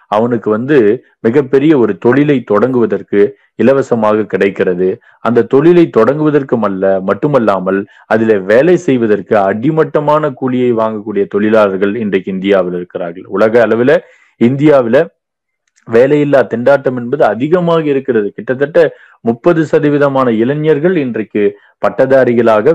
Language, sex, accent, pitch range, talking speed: Tamil, male, native, 105-145 Hz, 100 wpm